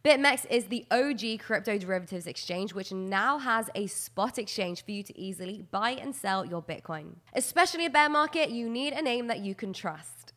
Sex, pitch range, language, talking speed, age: female, 205-260 Hz, English, 195 wpm, 20-39